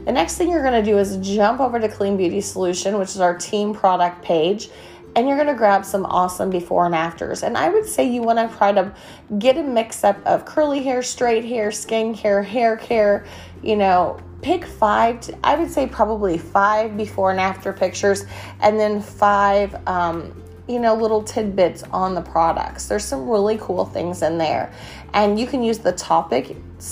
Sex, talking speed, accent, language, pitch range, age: female, 200 wpm, American, English, 175-225 Hz, 30-49